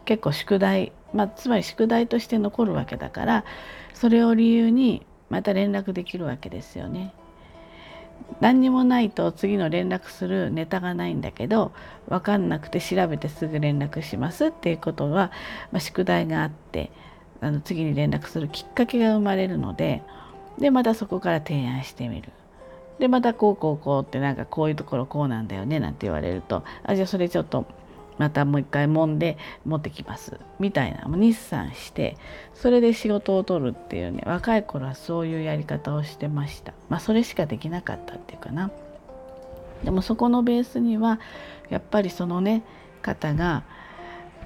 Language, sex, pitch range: Japanese, female, 145-215 Hz